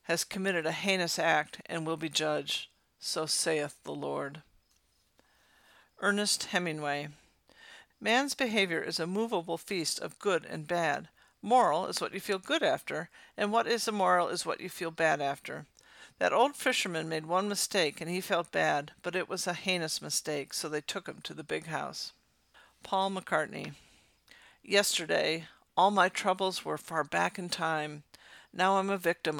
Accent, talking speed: American, 165 wpm